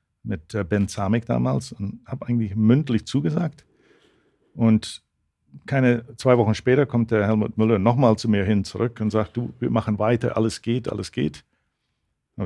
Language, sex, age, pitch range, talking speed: German, male, 50-69, 95-120 Hz, 165 wpm